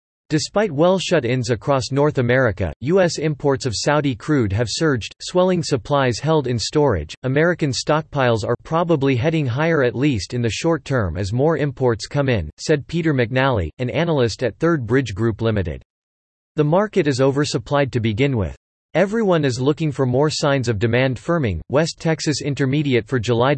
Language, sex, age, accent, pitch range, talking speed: English, male, 40-59, American, 120-150 Hz, 165 wpm